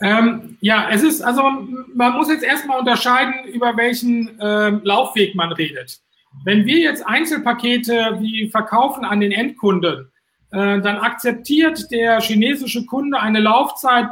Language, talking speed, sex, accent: German, 140 wpm, male, German